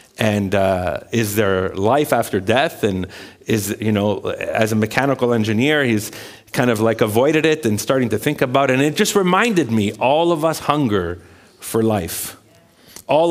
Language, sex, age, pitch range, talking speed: English, male, 40-59, 125-165 Hz, 175 wpm